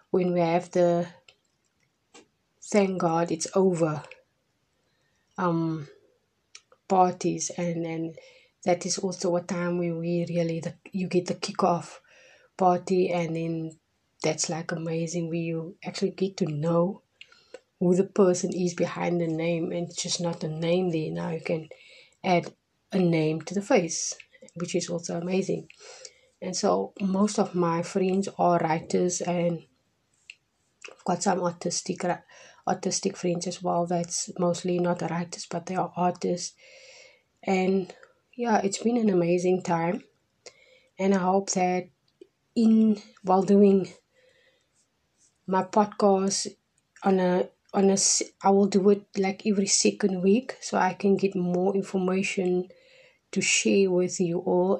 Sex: female